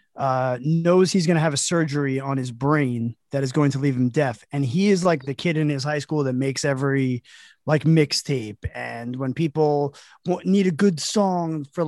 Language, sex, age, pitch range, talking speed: English, male, 30-49, 135-175 Hz, 205 wpm